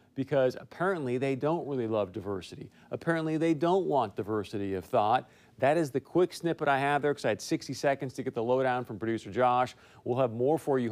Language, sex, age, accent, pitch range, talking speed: English, male, 40-59, American, 120-150 Hz, 215 wpm